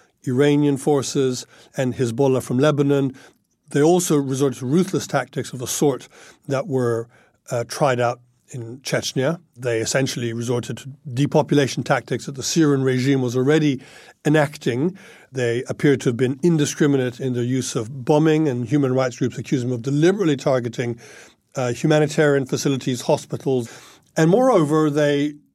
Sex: male